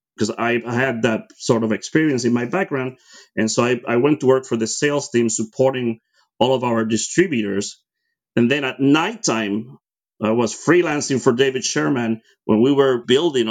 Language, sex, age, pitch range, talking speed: English, male, 30-49, 110-130 Hz, 180 wpm